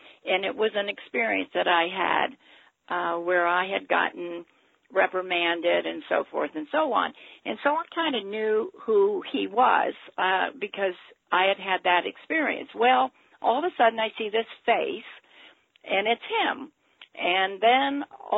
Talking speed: 165 wpm